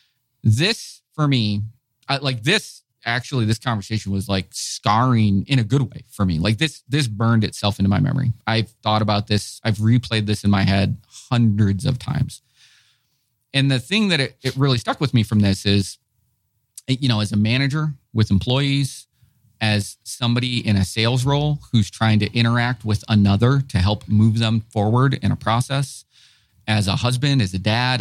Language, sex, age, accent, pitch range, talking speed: English, male, 30-49, American, 105-130 Hz, 180 wpm